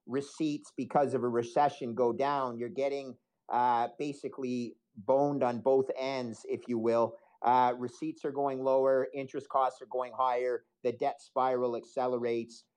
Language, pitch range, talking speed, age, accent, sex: English, 130-165 Hz, 150 wpm, 50-69, American, male